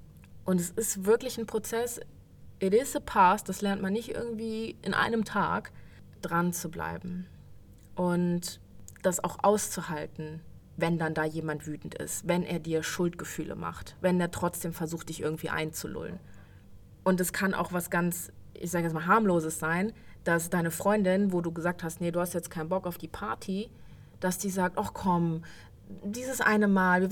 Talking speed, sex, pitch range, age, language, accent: 175 wpm, female, 170-225 Hz, 20-39, German, German